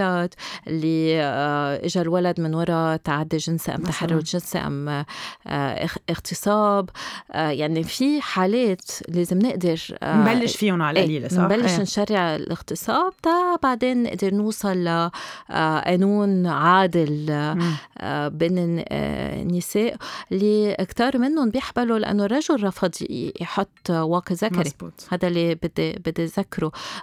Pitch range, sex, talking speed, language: 165-205 Hz, female, 110 wpm, Arabic